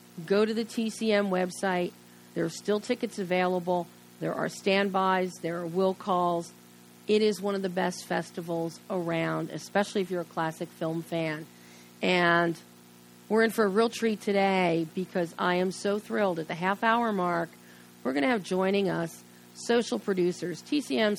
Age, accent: 40-59, American